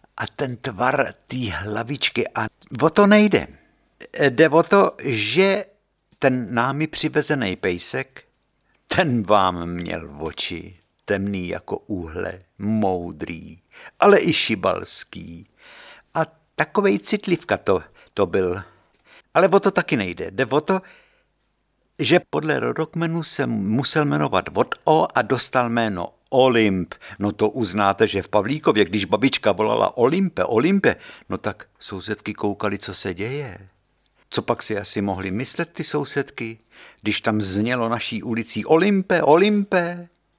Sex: male